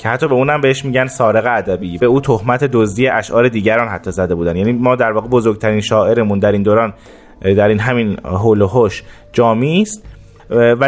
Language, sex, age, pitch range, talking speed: Persian, male, 30-49, 105-135 Hz, 195 wpm